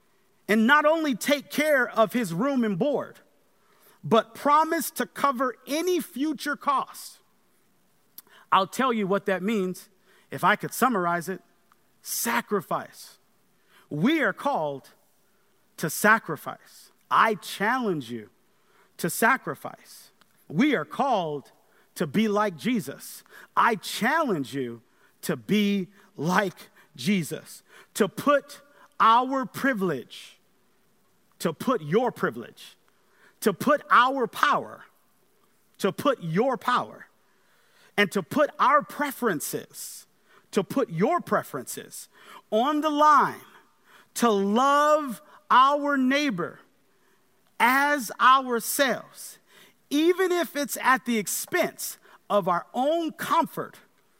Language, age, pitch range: English, 40-59, 200-280 Hz